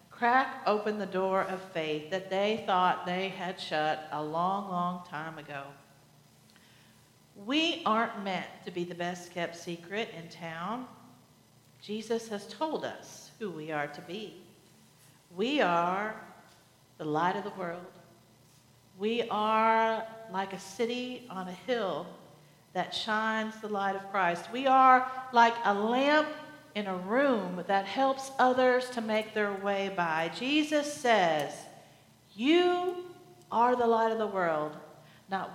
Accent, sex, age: American, female, 50-69